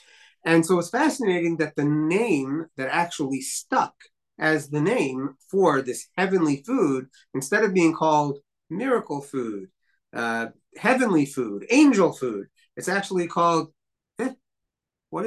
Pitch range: 135-185 Hz